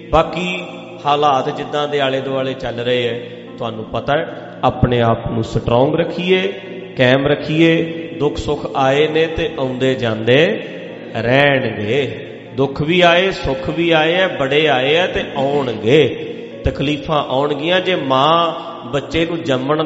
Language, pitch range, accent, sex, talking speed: English, 130-165 Hz, Indian, male, 140 wpm